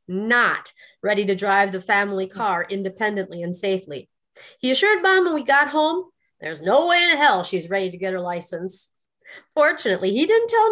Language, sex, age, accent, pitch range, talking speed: English, female, 40-59, American, 200-315 Hz, 180 wpm